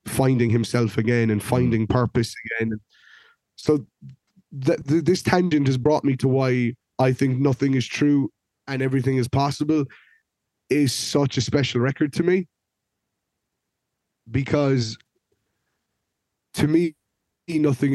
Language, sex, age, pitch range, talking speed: English, male, 20-39, 115-135 Hz, 115 wpm